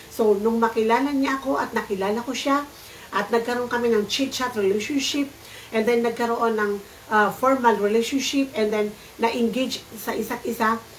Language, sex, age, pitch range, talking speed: Filipino, female, 50-69, 215-245 Hz, 145 wpm